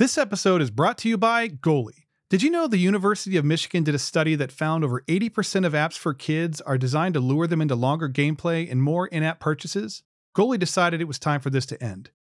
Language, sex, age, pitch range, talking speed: English, male, 40-59, 145-190 Hz, 230 wpm